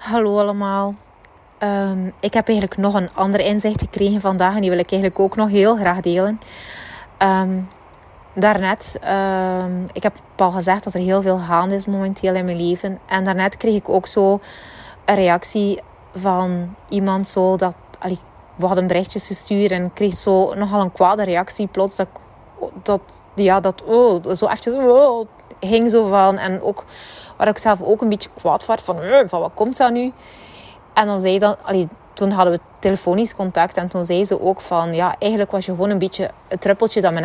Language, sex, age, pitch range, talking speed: Dutch, female, 30-49, 185-210 Hz, 195 wpm